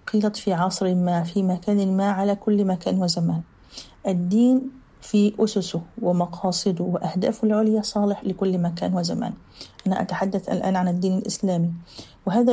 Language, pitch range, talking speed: Arabic, 180-205 Hz, 135 wpm